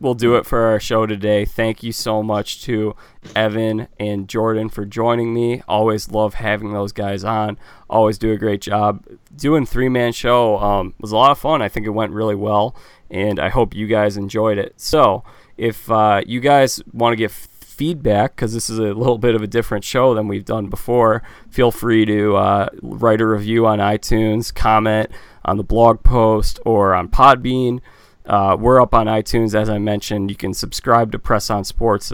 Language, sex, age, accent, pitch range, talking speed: English, male, 20-39, American, 105-120 Hz, 200 wpm